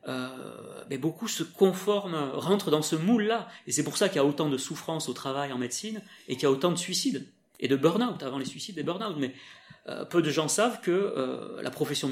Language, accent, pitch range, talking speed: French, French, 145-195 Hz, 240 wpm